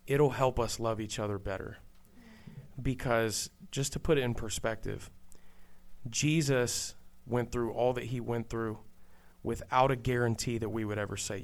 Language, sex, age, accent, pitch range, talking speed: English, male, 30-49, American, 105-130 Hz, 155 wpm